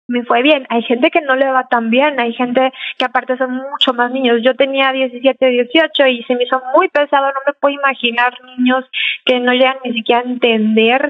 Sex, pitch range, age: female, 240-275 Hz, 20-39